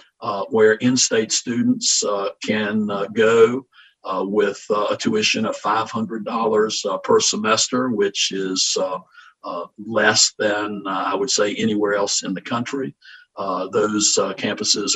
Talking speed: 150 wpm